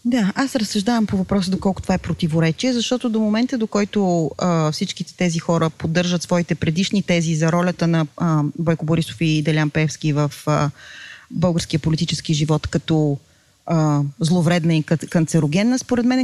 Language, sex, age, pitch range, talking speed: Bulgarian, female, 30-49, 170-215 Hz, 160 wpm